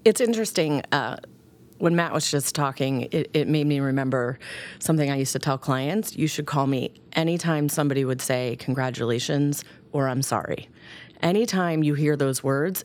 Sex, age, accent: female, 30-49, American